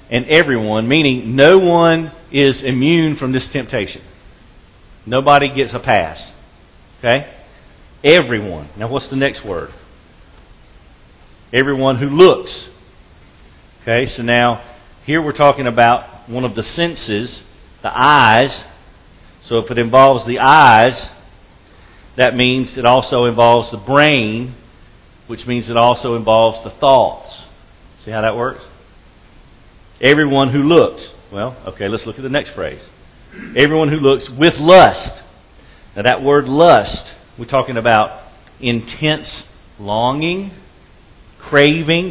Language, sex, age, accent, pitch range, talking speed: English, male, 50-69, American, 115-145 Hz, 125 wpm